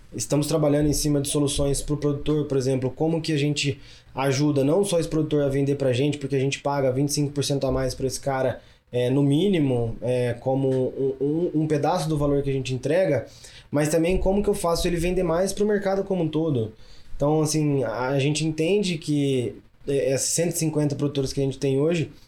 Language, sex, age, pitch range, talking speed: Portuguese, male, 20-39, 130-165 Hz, 215 wpm